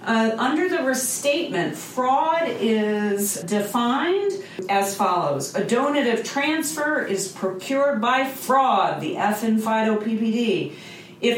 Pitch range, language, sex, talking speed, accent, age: 190-270 Hz, English, female, 115 wpm, American, 40-59